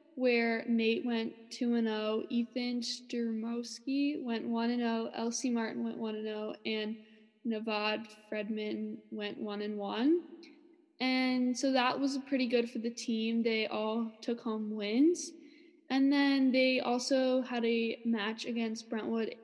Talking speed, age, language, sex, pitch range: 125 wpm, 10-29, English, female, 225-255 Hz